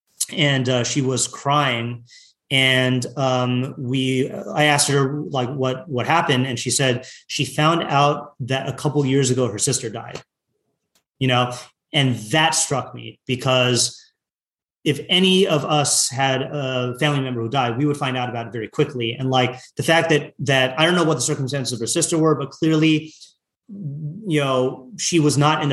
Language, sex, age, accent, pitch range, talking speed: English, male, 30-49, American, 125-150 Hz, 180 wpm